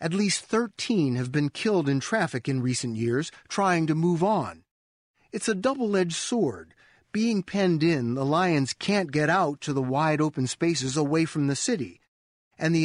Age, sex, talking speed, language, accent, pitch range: 40-59, male, 180 wpm, English, American, 140-185 Hz